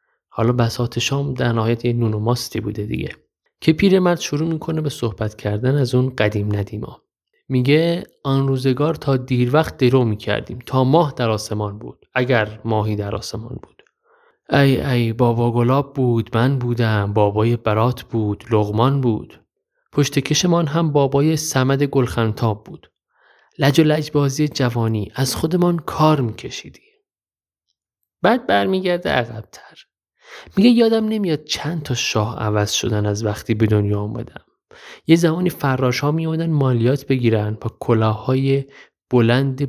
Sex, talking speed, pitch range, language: male, 140 wpm, 115-150 Hz, Persian